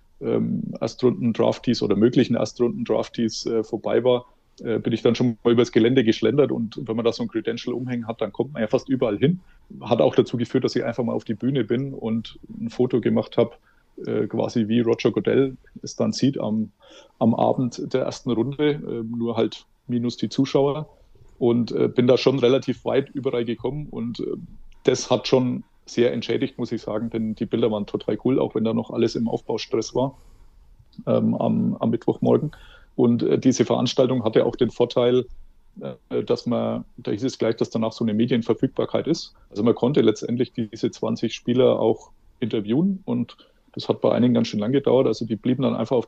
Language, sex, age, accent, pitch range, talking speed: German, male, 30-49, German, 115-125 Hz, 195 wpm